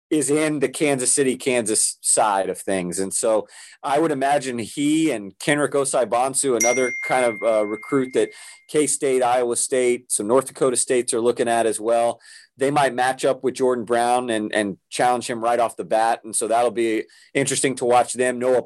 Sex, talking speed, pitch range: male, 195 wpm, 115-135 Hz